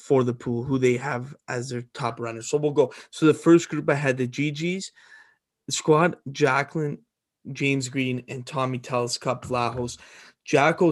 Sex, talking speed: male, 175 wpm